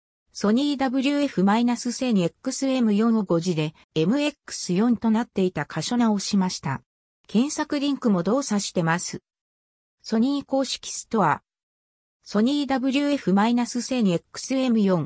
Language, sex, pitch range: Japanese, female, 180-255 Hz